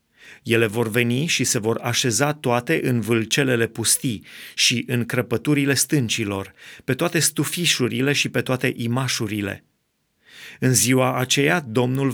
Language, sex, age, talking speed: Romanian, male, 30-49, 130 wpm